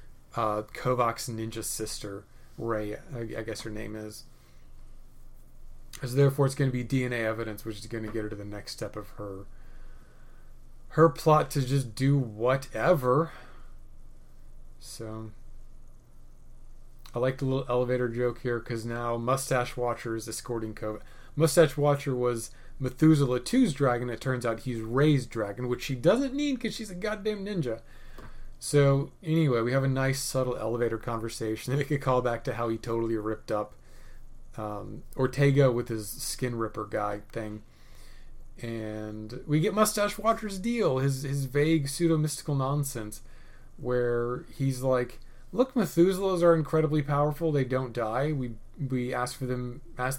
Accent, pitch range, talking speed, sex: American, 110-140 Hz, 155 wpm, male